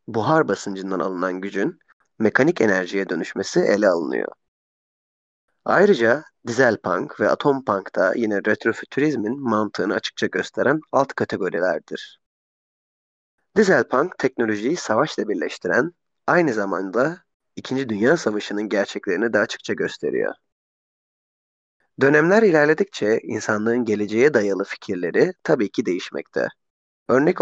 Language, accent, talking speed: Turkish, native, 95 wpm